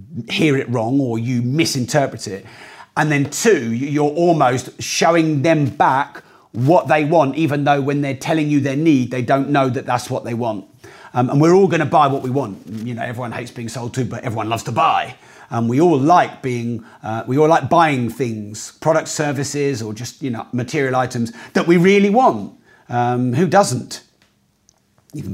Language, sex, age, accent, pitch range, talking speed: English, male, 40-59, British, 125-150 Hz, 200 wpm